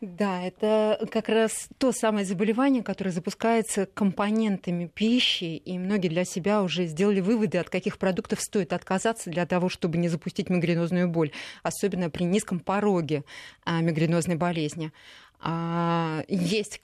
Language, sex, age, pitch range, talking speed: Russian, female, 20-39, 165-195 Hz, 130 wpm